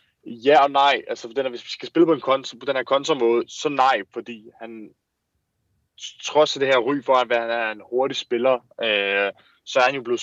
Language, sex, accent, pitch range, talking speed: Danish, male, native, 110-140 Hz, 205 wpm